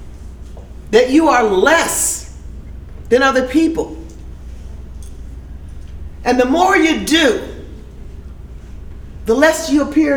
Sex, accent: female, American